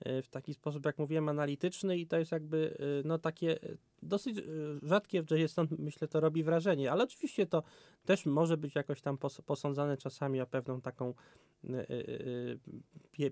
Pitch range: 130-155 Hz